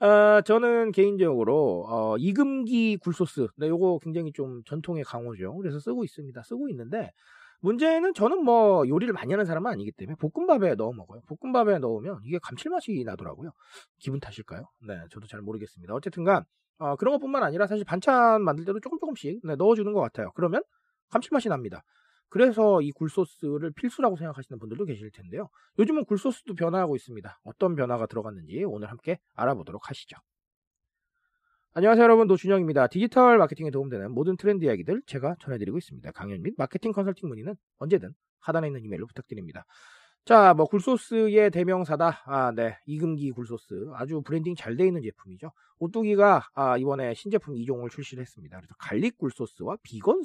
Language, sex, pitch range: Korean, male, 135-215 Hz